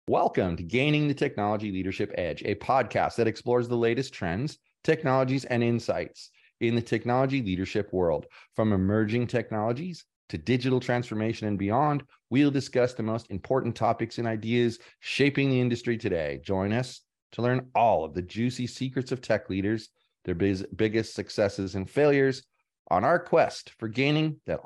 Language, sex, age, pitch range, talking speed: English, male, 30-49, 105-125 Hz, 160 wpm